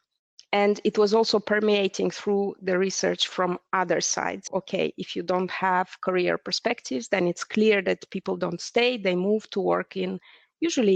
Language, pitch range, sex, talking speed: English, 185-220 Hz, female, 170 wpm